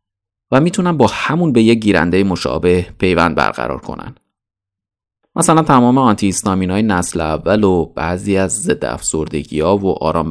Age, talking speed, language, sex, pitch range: 30-49, 145 wpm, Persian, male, 85-120 Hz